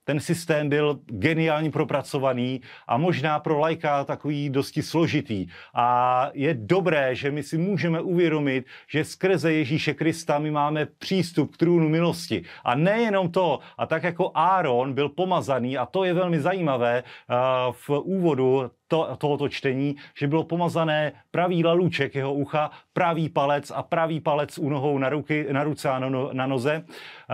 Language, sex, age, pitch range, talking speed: Slovak, male, 30-49, 140-165 Hz, 150 wpm